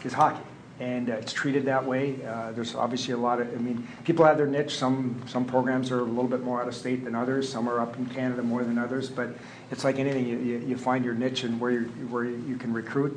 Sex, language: male, English